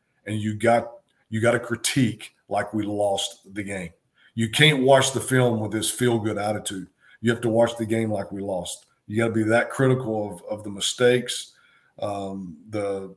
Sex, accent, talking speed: male, American, 195 wpm